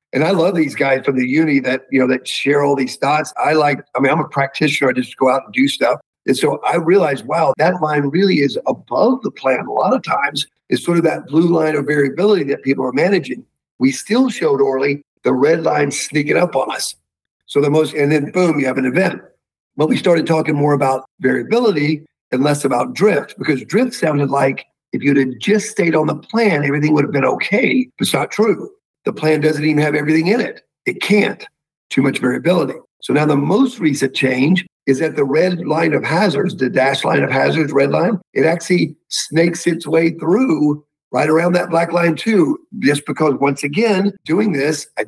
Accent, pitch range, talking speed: American, 140-175 Hz, 215 wpm